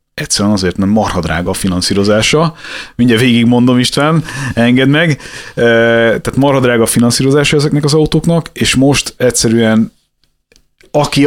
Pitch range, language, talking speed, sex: 100-130 Hz, Hungarian, 130 wpm, male